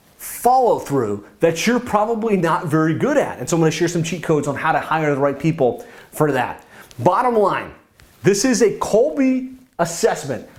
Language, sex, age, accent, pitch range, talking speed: English, male, 30-49, American, 160-215 Hz, 185 wpm